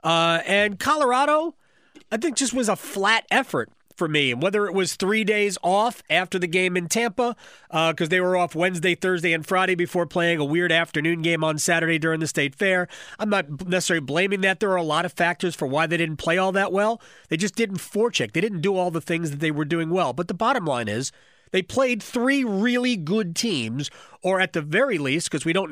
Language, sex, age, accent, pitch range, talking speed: English, male, 30-49, American, 155-210 Hz, 230 wpm